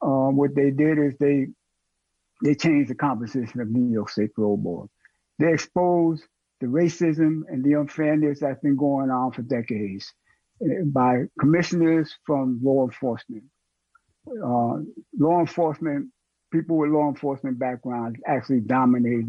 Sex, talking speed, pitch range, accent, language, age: male, 140 wpm, 125-155 Hz, American, English, 60-79